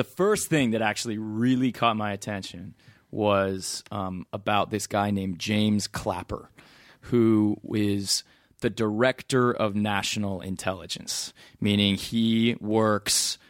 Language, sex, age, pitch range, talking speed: English, male, 20-39, 95-120 Hz, 120 wpm